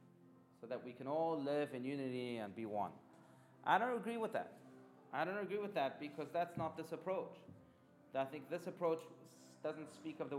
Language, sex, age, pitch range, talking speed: English, male, 30-49, 145-205 Hz, 195 wpm